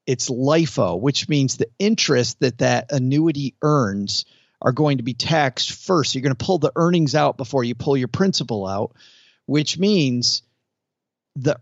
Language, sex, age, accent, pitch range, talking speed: English, male, 40-59, American, 125-155 Hz, 165 wpm